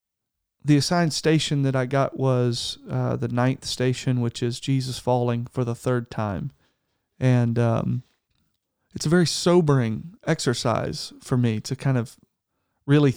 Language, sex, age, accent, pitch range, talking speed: English, male, 40-59, American, 120-135 Hz, 145 wpm